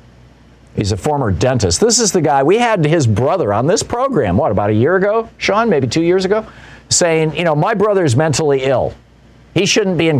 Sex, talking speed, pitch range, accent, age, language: male, 210 wpm, 120-160 Hz, American, 50-69, English